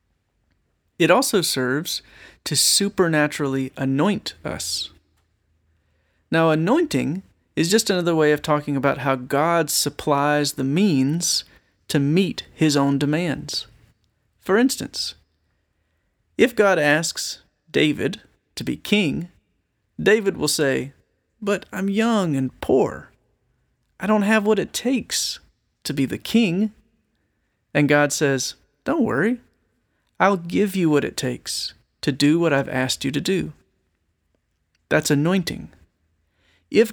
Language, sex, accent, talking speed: English, male, American, 120 wpm